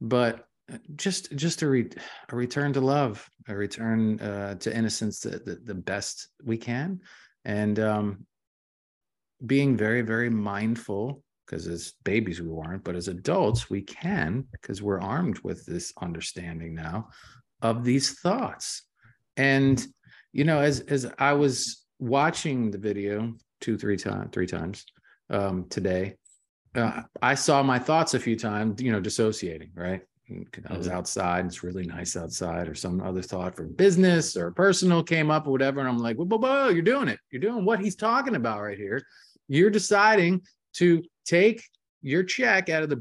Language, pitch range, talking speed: English, 100-155 Hz, 165 wpm